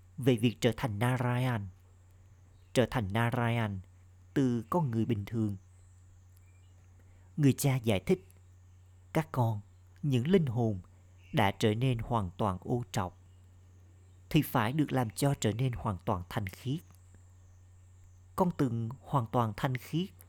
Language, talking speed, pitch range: Vietnamese, 135 wpm, 90-125 Hz